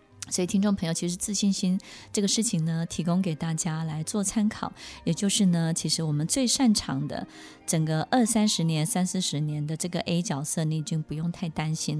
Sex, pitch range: female, 160-210 Hz